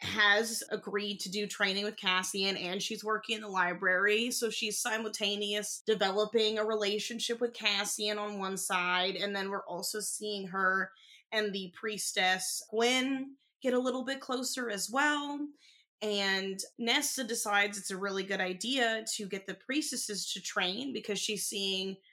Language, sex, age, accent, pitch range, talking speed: English, female, 20-39, American, 185-220 Hz, 155 wpm